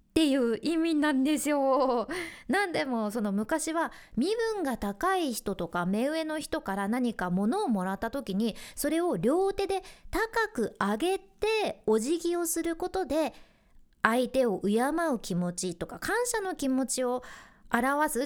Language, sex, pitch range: Japanese, female, 225-360 Hz